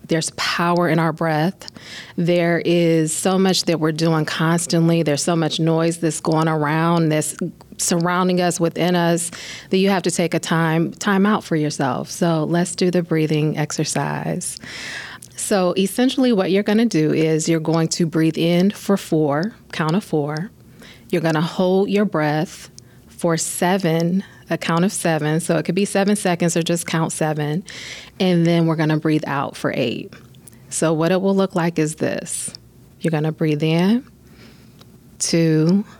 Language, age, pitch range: English, 30-49, 150-175 Hz